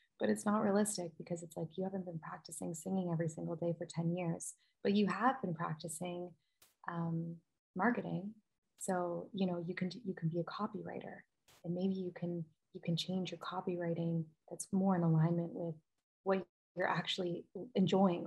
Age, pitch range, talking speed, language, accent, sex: 20-39, 175-195 Hz, 175 wpm, English, American, female